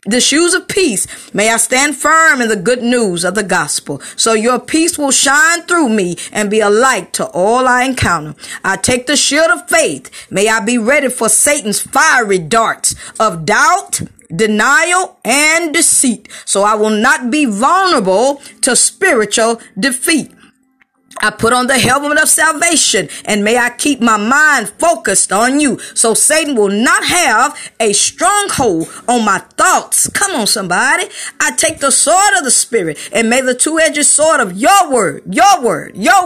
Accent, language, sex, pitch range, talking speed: American, English, female, 220-320 Hz, 175 wpm